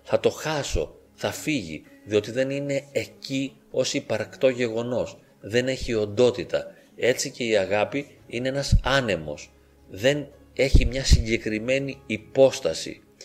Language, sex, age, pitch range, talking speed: Greek, male, 30-49, 110-140 Hz, 120 wpm